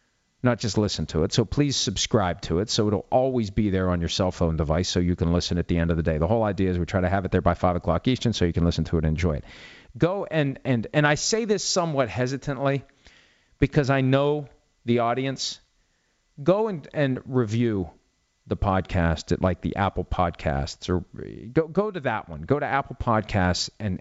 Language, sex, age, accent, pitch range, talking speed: English, male, 40-59, American, 90-135 Hz, 220 wpm